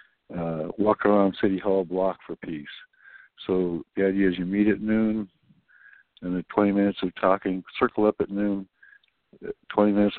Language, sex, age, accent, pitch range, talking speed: English, male, 60-79, American, 95-105 Hz, 165 wpm